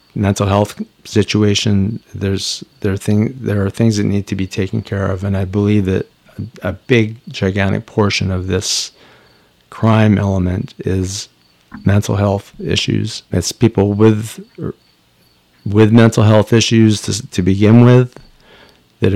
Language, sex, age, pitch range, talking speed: English, male, 50-69, 95-110 Hz, 145 wpm